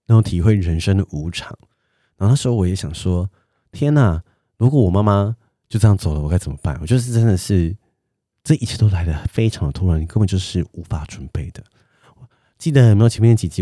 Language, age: Chinese, 30-49